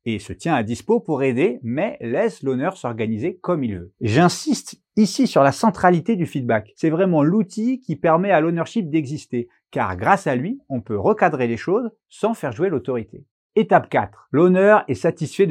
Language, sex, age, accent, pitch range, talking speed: French, male, 30-49, French, 120-200 Hz, 180 wpm